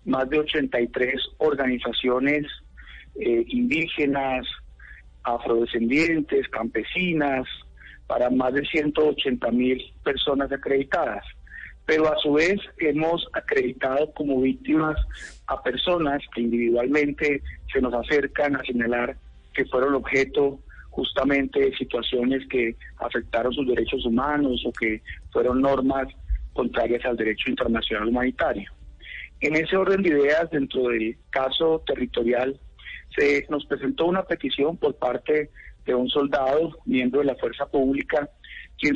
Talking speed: 120 wpm